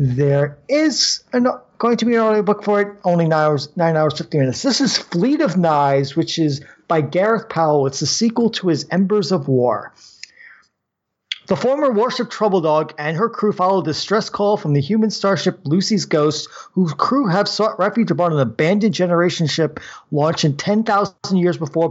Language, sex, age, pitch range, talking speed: English, male, 40-59, 155-210 Hz, 185 wpm